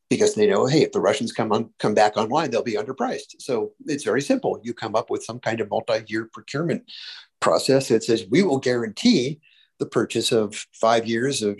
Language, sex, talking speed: English, male, 205 wpm